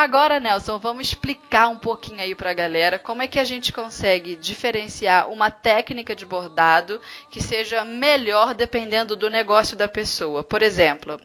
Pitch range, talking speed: 195-240 Hz, 165 wpm